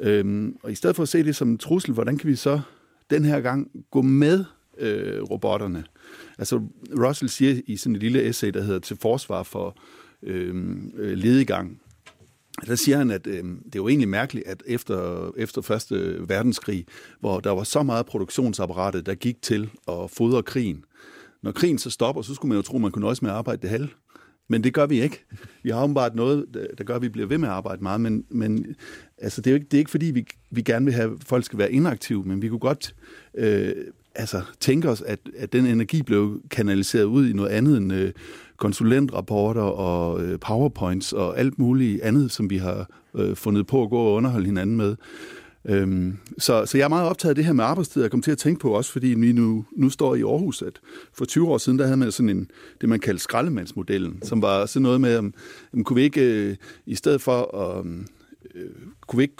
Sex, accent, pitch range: male, native, 100-135 Hz